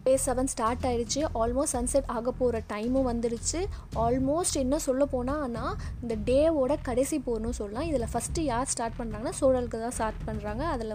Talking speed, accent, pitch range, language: 165 wpm, native, 220-270 Hz, Tamil